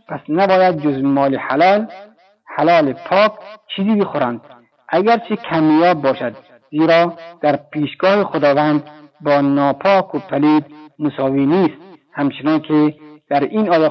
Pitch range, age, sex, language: 145-185 Hz, 50-69, male, Persian